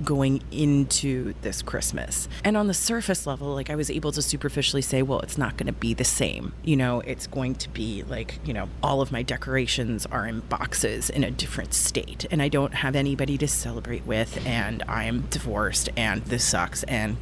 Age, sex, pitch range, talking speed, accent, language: 30-49, female, 130-155 Hz, 200 wpm, American, English